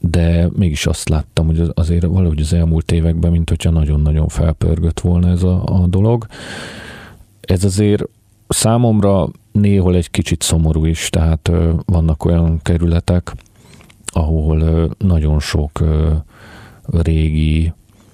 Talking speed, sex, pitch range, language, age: 115 wpm, male, 80-95 Hz, Hungarian, 40-59